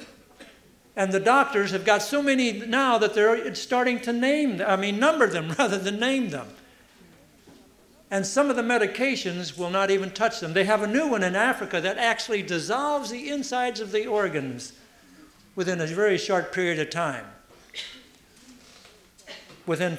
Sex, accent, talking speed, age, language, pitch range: male, American, 165 wpm, 60-79, English, 170-240 Hz